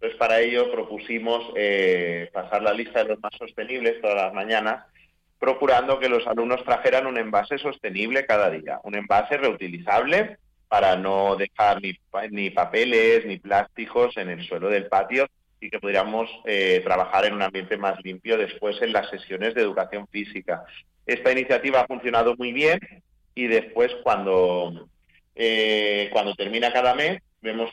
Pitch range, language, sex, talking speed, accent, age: 95-125 Hz, Spanish, male, 155 wpm, Spanish, 40-59